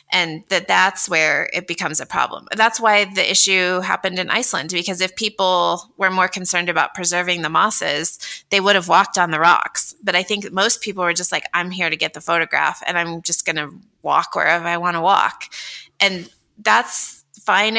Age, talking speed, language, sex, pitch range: 20-39, 200 wpm, English, female, 165-195 Hz